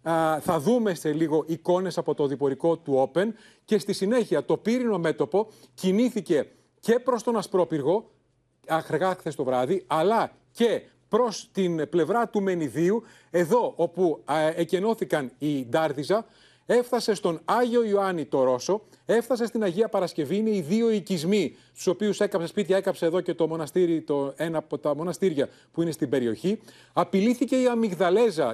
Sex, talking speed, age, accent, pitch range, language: male, 150 wpm, 40-59, native, 160-220 Hz, Greek